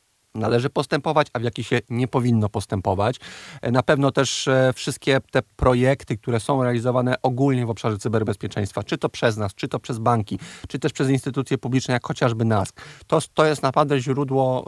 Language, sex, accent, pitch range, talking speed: Polish, male, native, 115-140 Hz, 170 wpm